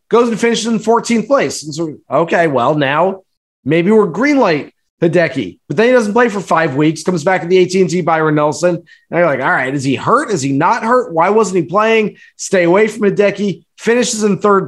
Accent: American